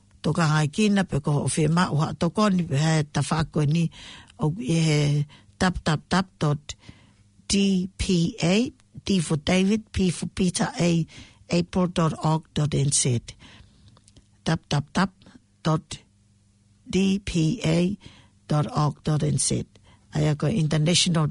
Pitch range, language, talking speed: 145-185 Hz, English, 120 wpm